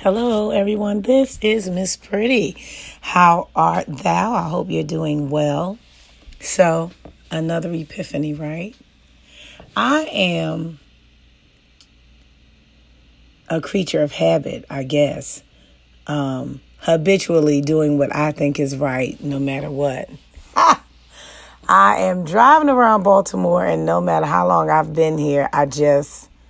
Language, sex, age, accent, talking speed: English, female, 40-59, American, 120 wpm